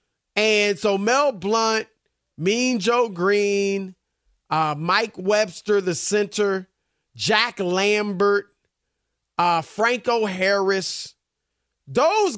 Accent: American